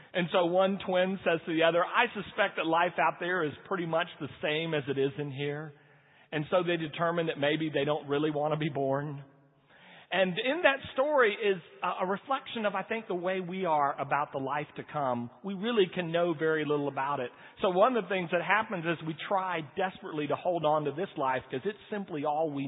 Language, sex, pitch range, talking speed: English, male, 145-200 Hz, 230 wpm